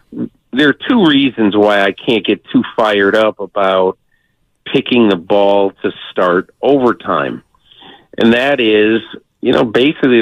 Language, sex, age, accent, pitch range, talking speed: English, male, 50-69, American, 100-120 Hz, 140 wpm